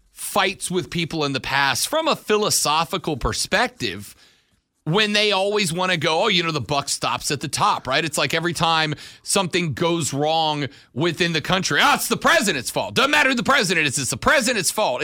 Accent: American